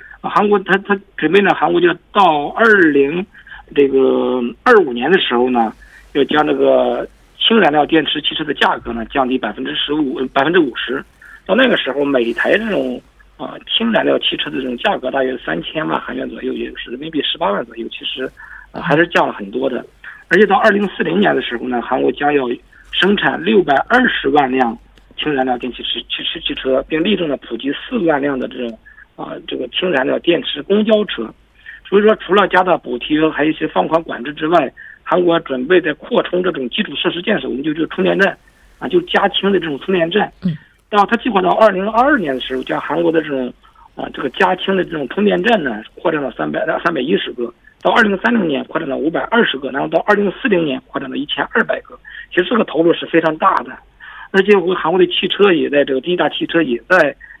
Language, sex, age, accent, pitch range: Korean, male, 50-69, Chinese, 135-200 Hz